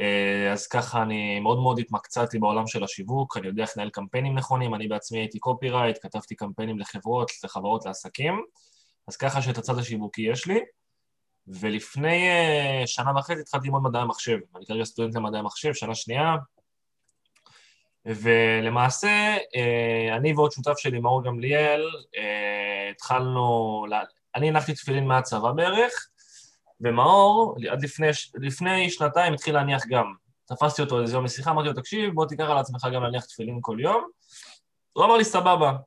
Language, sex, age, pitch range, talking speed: Hebrew, male, 20-39, 115-165 Hz, 145 wpm